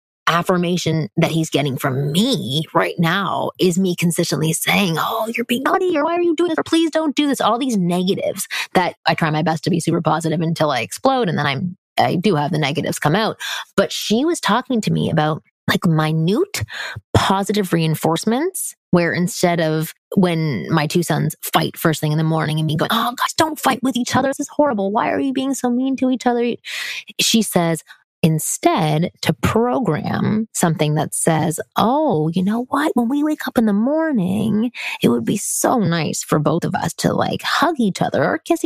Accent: American